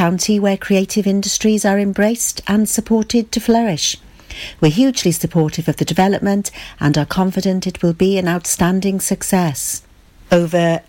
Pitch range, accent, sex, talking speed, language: 150-210 Hz, British, female, 145 wpm, English